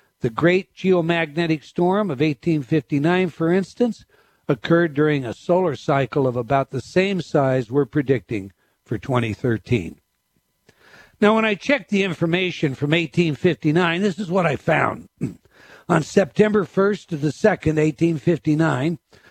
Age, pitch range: 60-79, 145-180 Hz